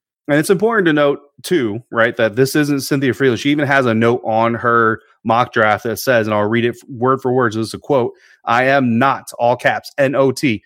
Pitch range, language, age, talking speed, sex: 110-130 Hz, English, 30-49, 230 wpm, male